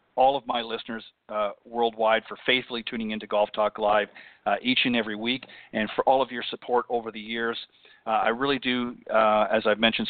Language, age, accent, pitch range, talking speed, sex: English, 40-59, American, 115-130 Hz, 210 wpm, male